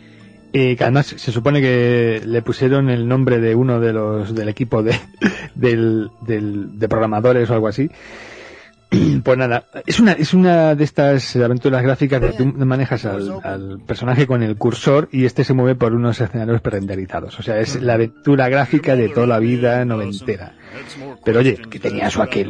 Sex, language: male, Spanish